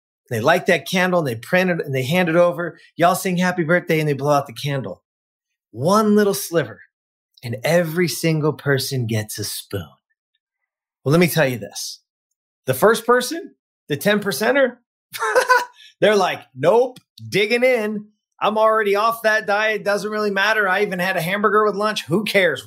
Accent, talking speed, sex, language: American, 175 wpm, male, English